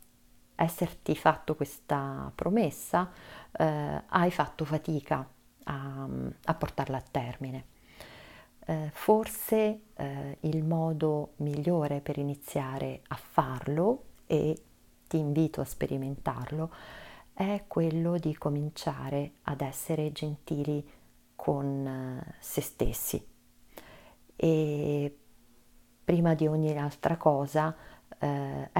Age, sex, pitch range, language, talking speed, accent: 40-59, female, 140-165 Hz, Italian, 95 wpm, native